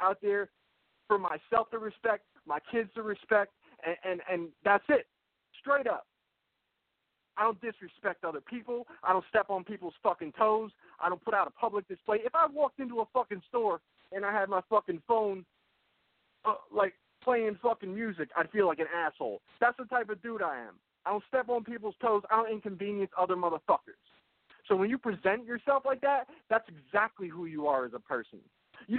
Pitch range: 190-240 Hz